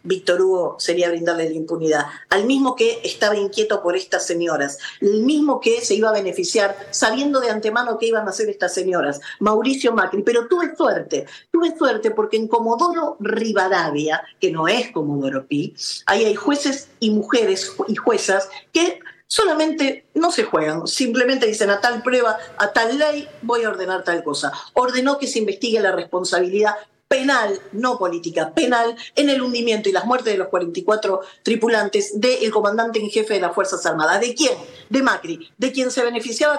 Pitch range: 190-260 Hz